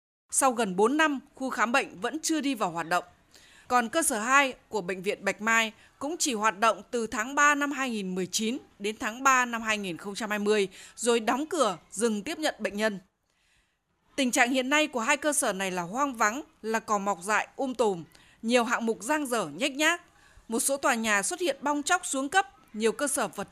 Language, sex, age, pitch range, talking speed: Vietnamese, female, 20-39, 215-285 Hz, 210 wpm